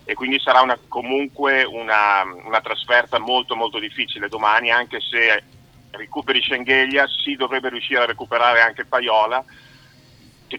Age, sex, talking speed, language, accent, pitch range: 40-59, male, 140 wpm, Italian, native, 110-130 Hz